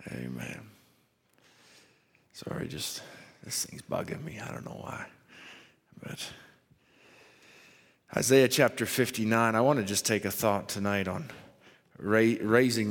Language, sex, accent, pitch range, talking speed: English, male, American, 100-120 Hz, 115 wpm